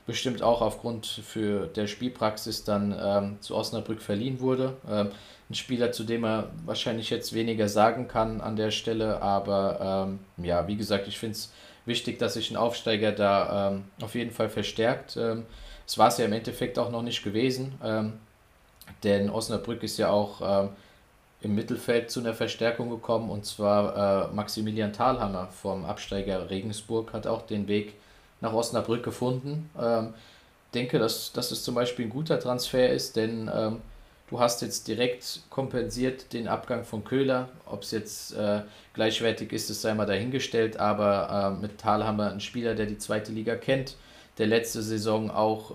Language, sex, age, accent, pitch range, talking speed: German, male, 20-39, German, 105-115 Hz, 175 wpm